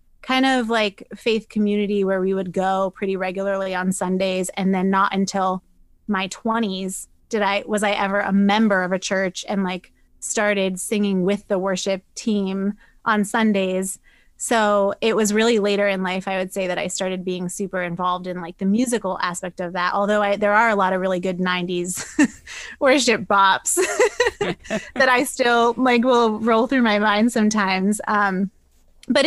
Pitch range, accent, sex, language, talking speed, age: 190-220 Hz, American, female, English, 175 wpm, 20-39